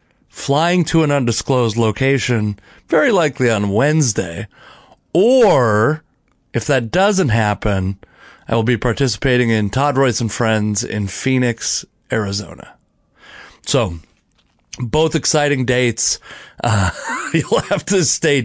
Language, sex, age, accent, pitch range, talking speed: English, male, 30-49, American, 115-145 Hz, 115 wpm